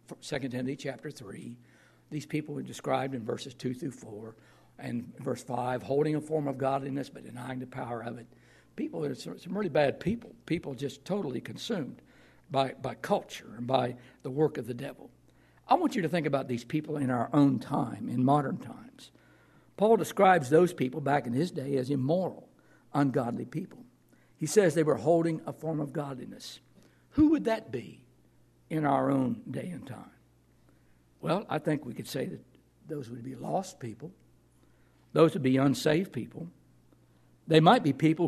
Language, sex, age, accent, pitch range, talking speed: English, male, 60-79, American, 125-160 Hz, 180 wpm